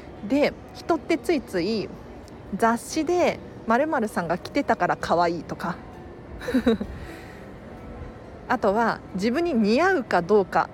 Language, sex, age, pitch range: Japanese, female, 40-59, 195-315 Hz